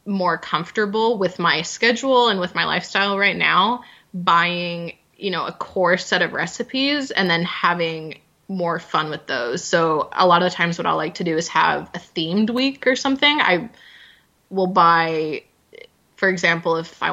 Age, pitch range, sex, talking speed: 20-39, 160-195 Hz, female, 175 wpm